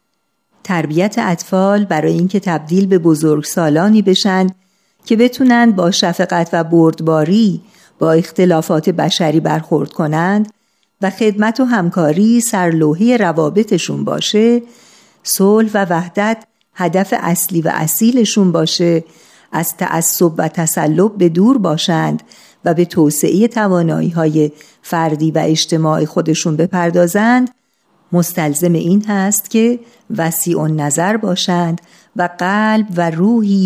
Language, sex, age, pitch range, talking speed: Persian, female, 50-69, 165-210 Hz, 110 wpm